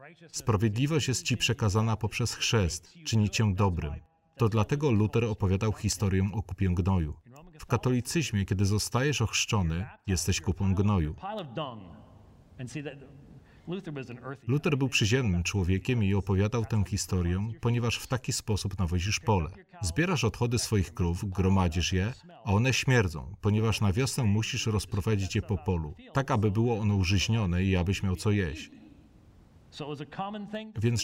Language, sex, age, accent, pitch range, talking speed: Polish, male, 40-59, native, 95-130 Hz, 130 wpm